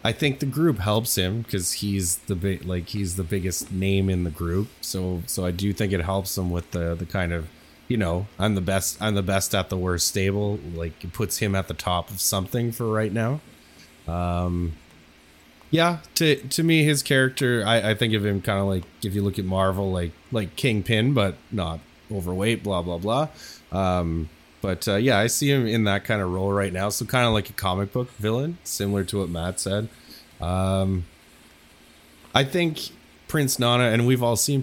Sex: male